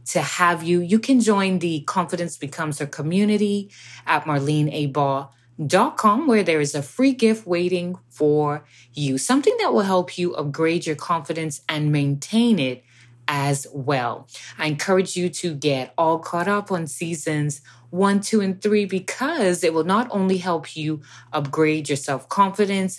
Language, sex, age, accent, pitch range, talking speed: English, female, 20-39, American, 145-190 Hz, 155 wpm